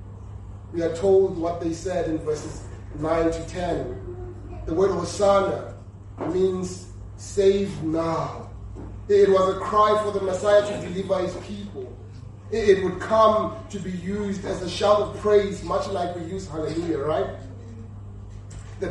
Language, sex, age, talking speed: English, male, 30-49, 145 wpm